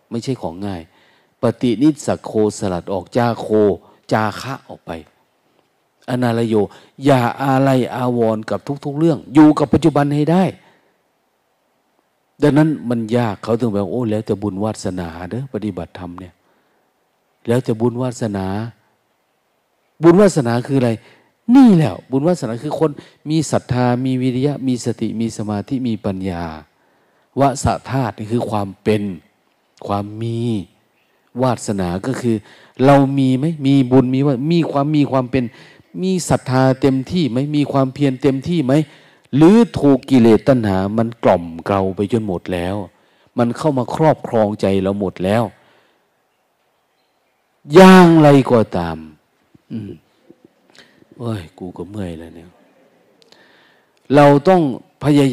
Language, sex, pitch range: Thai, male, 105-140 Hz